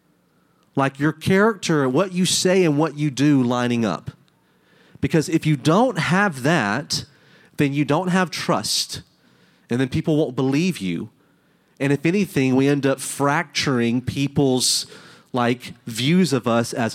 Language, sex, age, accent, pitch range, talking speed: English, male, 30-49, American, 130-165 Hz, 150 wpm